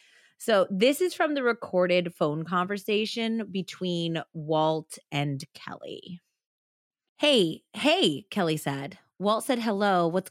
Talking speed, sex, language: 115 wpm, female, English